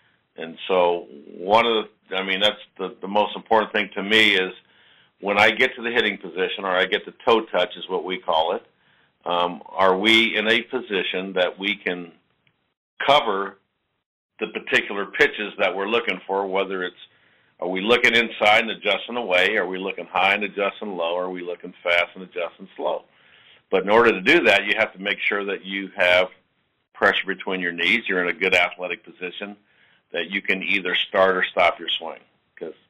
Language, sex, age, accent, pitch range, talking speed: English, male, 50-69, American, 90-115 Hz, 195 wpm